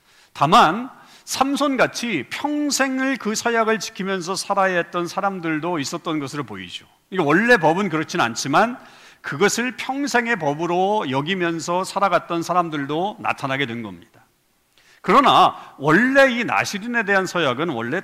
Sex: male